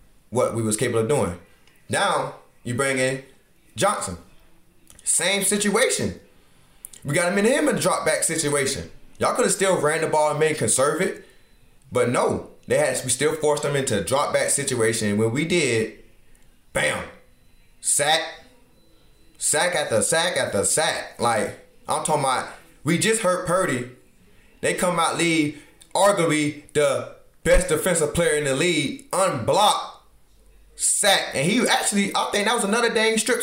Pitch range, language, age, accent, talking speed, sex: 130-195 Hz, English, 20-39, American, 155 wpm, male